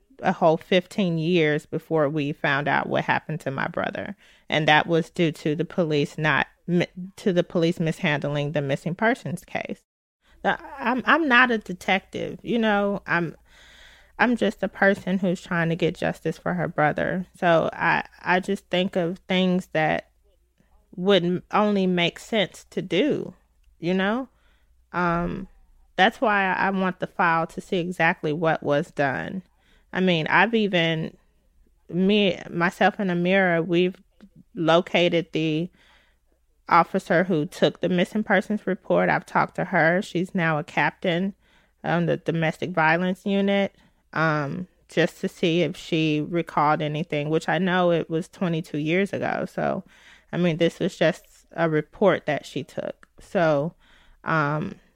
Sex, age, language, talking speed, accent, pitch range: female, 30-49, English, 150 wpm, American, 160-190 Hz